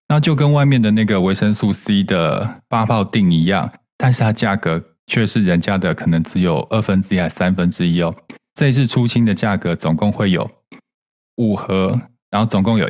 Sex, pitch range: male, 95-125 Hz